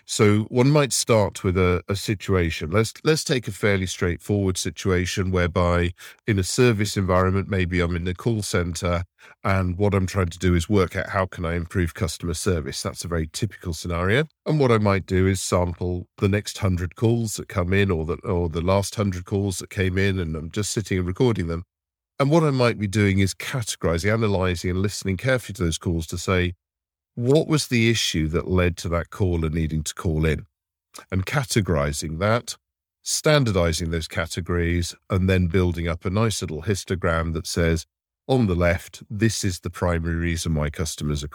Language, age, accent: English, 50-69, British